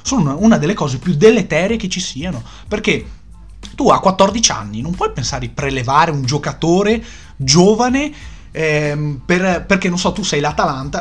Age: 30-49